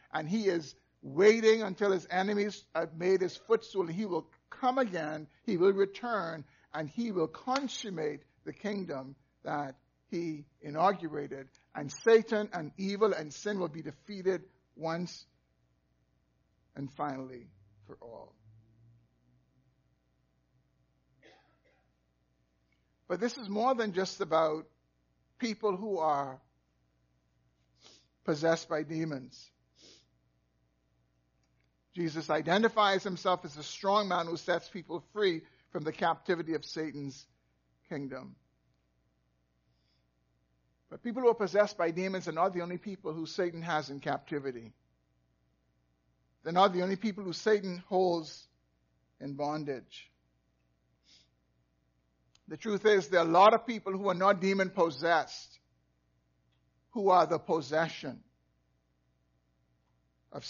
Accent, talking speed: American, 115 wpm